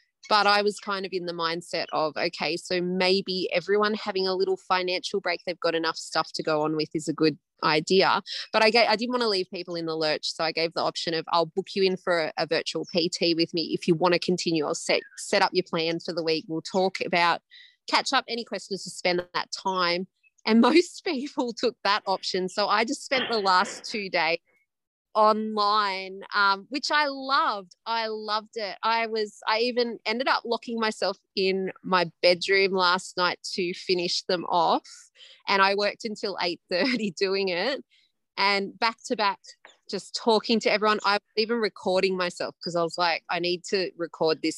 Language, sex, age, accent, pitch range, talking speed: English, female, 30-49, Australian, 175-220 Hz, 205 wpm